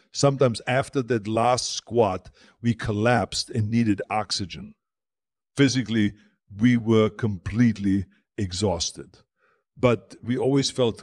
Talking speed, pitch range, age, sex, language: 105 wpm, 105-120 Hz, 50-69, male, English